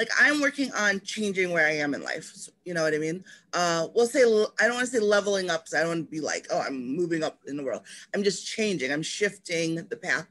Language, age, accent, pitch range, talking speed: English, 20-39, American, 165-210 Hz, 255 wpm